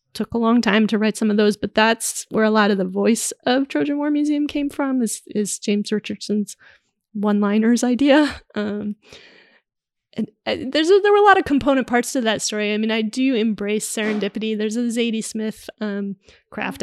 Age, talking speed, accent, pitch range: 20-39, 205 wpm, American, 205-235 Hz